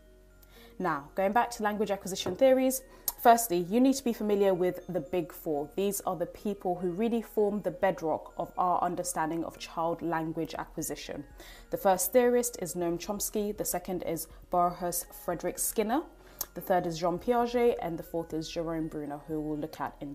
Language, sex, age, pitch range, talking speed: English, female, 20-39, 165-220 Hz, 180 wpm